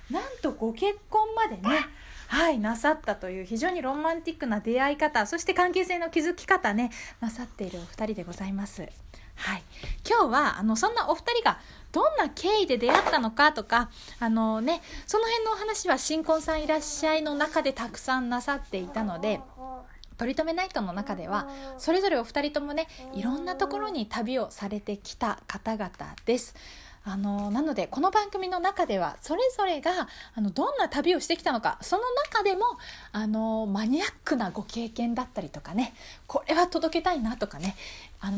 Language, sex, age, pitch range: Japanese, female, 20-39, 225-345 Hz